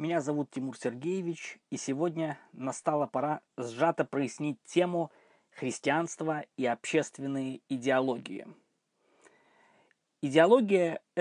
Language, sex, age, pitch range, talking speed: Russian, male, 20-39, 140-175 Hz, 90 wpm